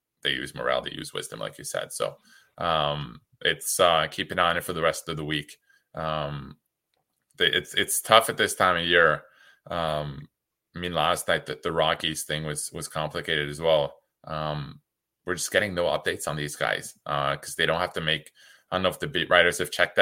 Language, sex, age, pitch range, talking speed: English, male, 20-39, 75-85 Hz, 210 wpm